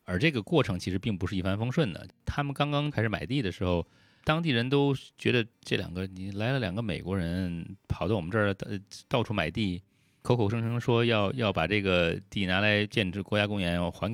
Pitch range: 90-115 Hz